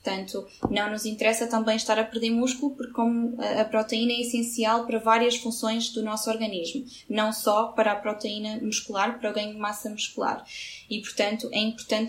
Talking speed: 180 wpm